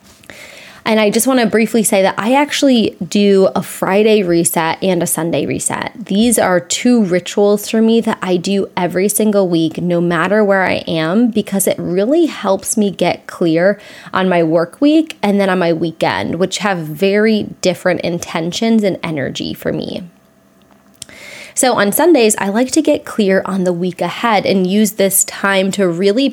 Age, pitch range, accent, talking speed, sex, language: 20-39, 180-220 Hz, American, 180 wpm, female, English